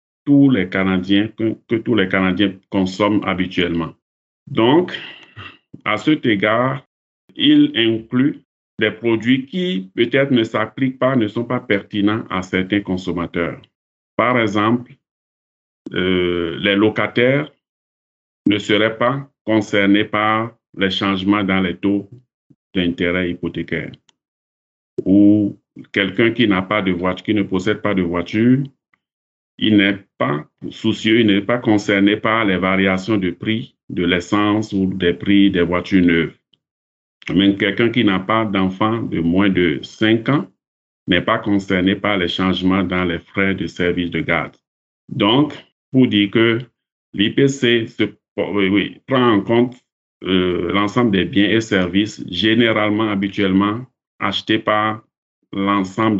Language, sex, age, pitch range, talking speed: French, male, 50-69, 95-110 Hz, 135 wpm